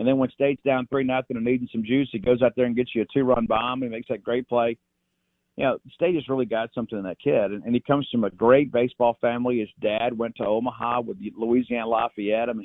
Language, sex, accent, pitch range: English, male, American, 115-135 Hz